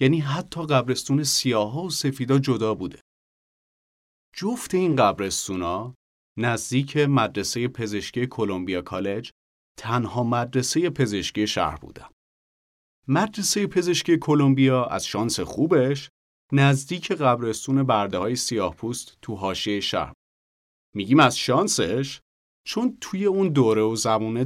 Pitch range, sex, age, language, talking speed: 105-140 Hz, male, 30-49, English, 115 wpm